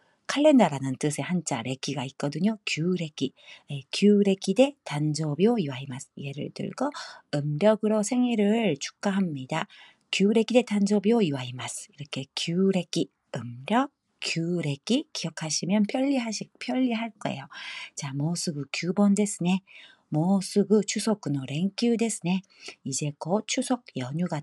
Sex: female